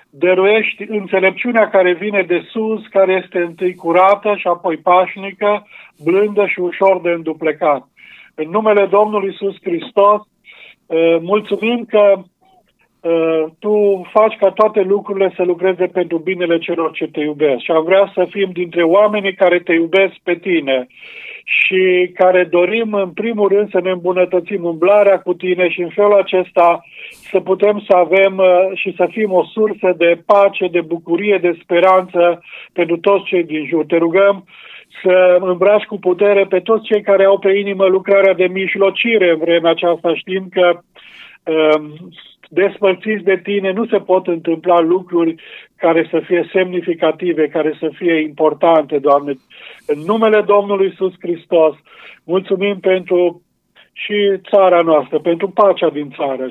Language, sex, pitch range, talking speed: Romanian, male, 165-195 Hz, 145 wpm